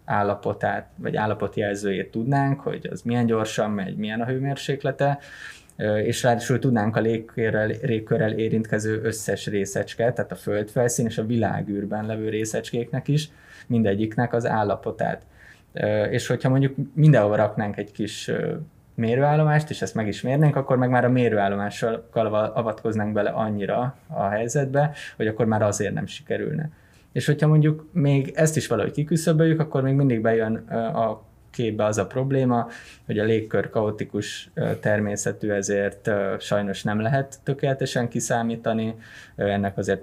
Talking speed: 135 wpm